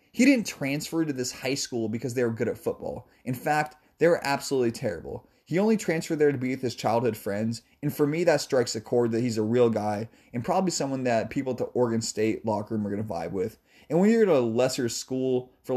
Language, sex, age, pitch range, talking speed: English, male, 30-49, 115-145 Hz, 245 wpm